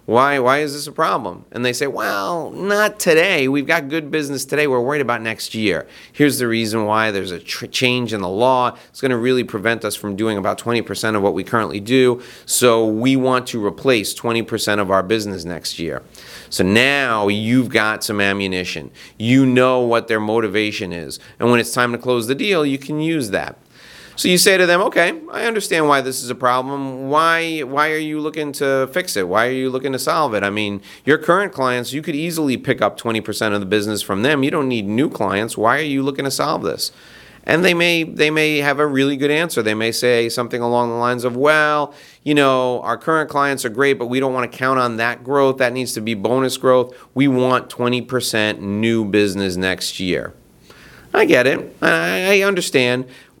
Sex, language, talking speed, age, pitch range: male, English, 215 wpm, 30-49, 110-140 Hz